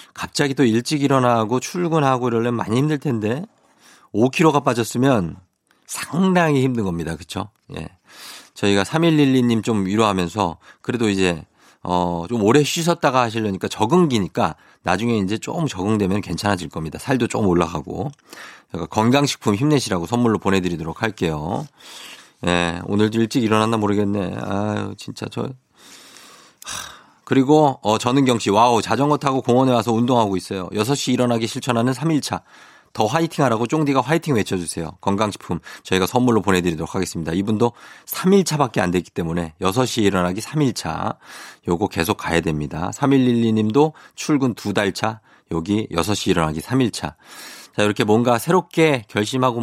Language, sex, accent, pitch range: Korean, male, native, 95-130 Hz